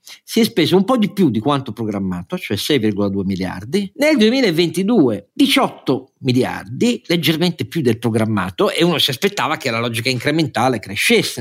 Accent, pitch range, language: native, 115-160 Hz, Italian